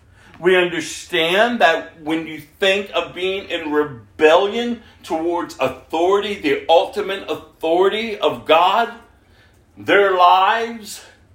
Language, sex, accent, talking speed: English, male, American, 100 wpm